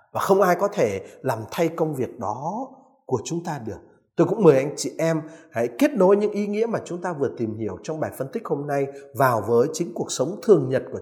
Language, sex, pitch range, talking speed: Vietnamese, male, 125-190 Hz, 250 wpm